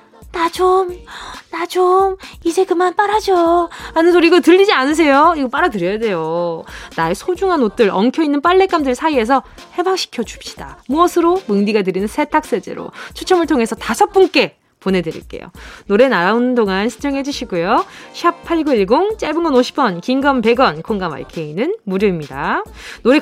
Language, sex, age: Korean, female, 20-39